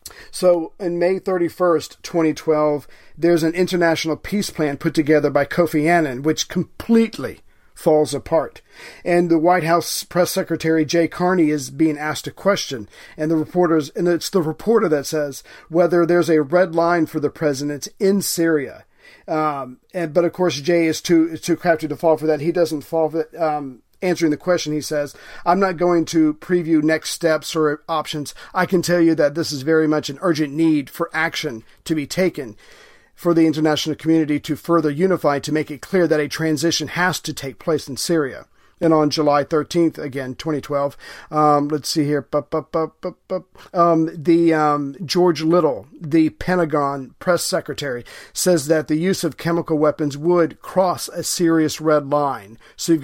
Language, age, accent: English, 40-59, American